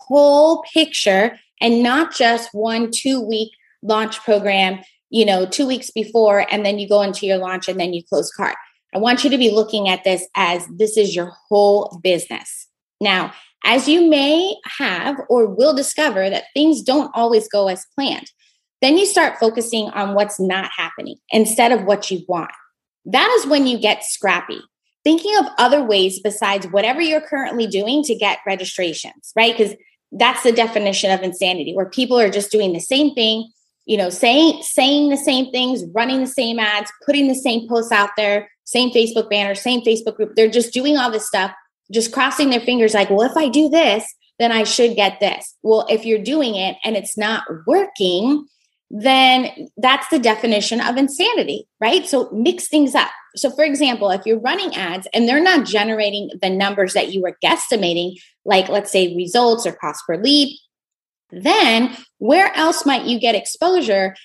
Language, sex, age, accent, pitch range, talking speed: English, female, 20-39, American, 200-270 Hz, 185 wpm